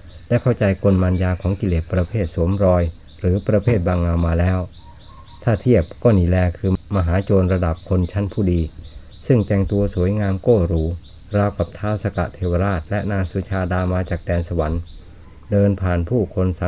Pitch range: 85-100 Hz